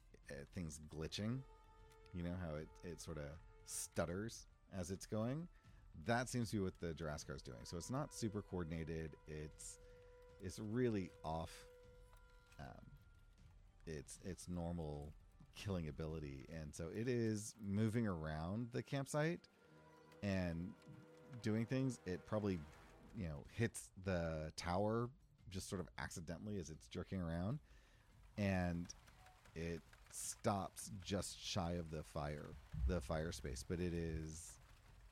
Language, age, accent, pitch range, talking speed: English, 30-49, American, 80-105 Hz, 130 wpm